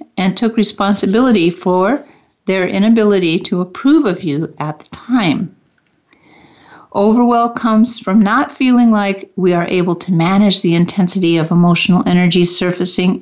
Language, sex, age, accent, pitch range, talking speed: English, female, 50-69, American, 180-225 Hz, 135 wpm